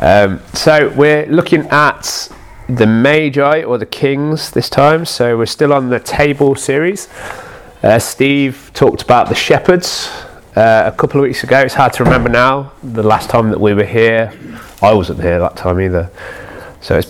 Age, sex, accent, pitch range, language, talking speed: 30-49, male, British, 100-145 Hz, English, 180 wpm